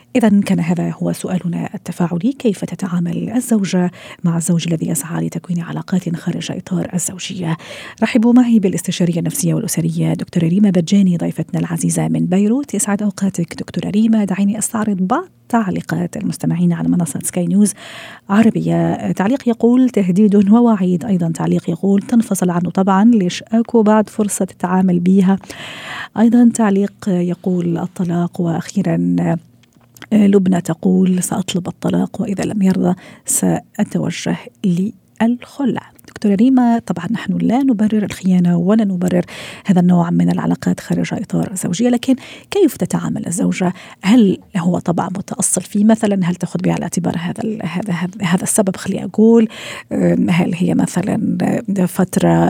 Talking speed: 135 wpm